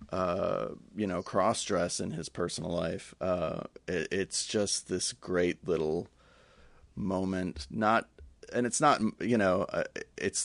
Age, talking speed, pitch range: 30-49, 130 wpm, 95-135 Hz